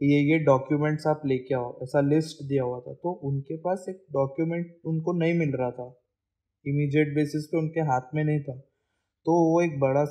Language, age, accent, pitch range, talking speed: Hindi, 20-39, native, 135-155 Hz, 195 wpm